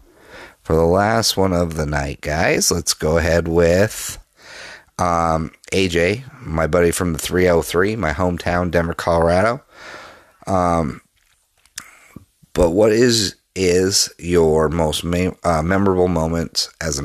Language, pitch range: English, 75-85 Hz